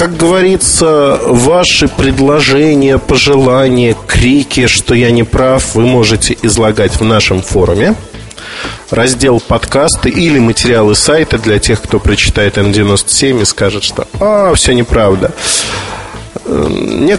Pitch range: 105-130 Hz